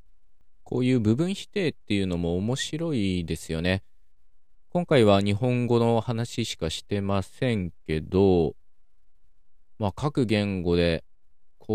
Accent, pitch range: native, 80-105 Hz